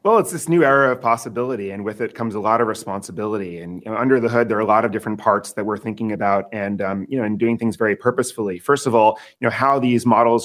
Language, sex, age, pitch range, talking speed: English, male, 30-49, 110-130 Hz, 280 wpm